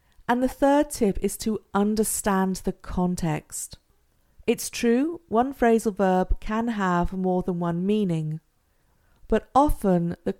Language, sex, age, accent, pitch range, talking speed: English, female, 40-59, British, 175-220 Hz, 135 wpm